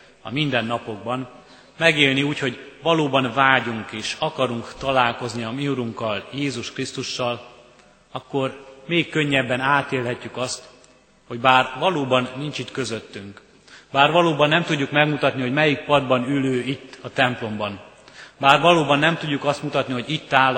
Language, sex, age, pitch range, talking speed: Hungarian, male, 30-49, 120-140 Hz, 135 wpm